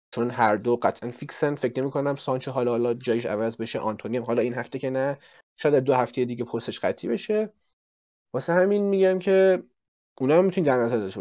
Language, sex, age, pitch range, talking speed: Persian, male, 30-49, 120-165 Hz, 195 wpm